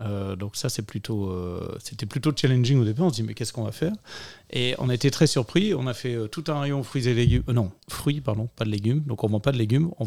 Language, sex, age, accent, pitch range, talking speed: Dutch, male, 40-59, French, 110-135 Hz, 300 wpm